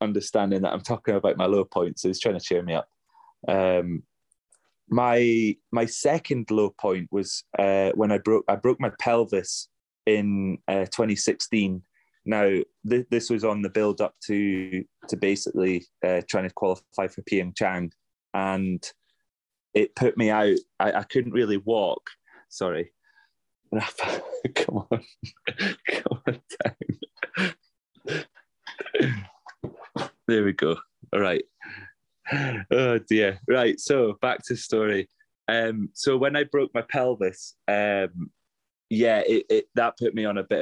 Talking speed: 145 wpm